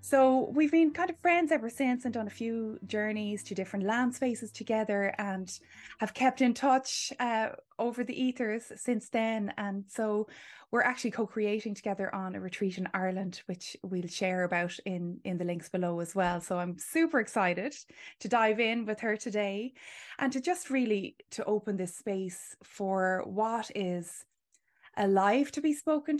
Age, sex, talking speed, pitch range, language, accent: 20-39, female, 175 wpm, 190-240 Hz, English, Irish